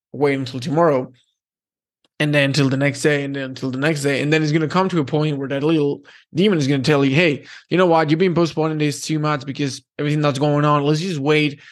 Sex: male